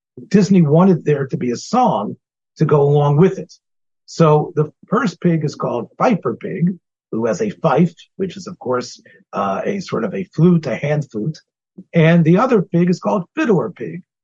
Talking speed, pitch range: 190 wpm, 145-190 Hz